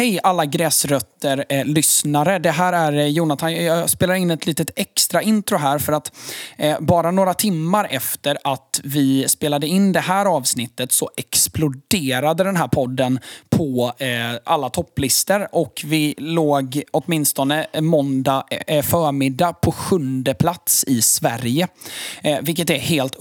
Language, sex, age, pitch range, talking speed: Swedish, male, 20-39, 135-175 Hz, 130 wpm